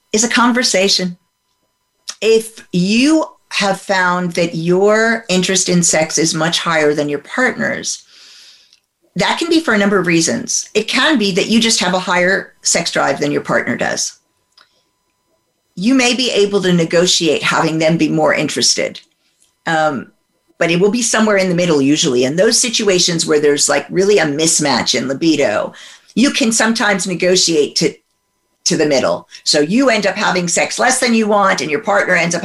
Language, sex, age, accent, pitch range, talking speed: English, female, 50-69, American, 170-220 Hz, 180 wpm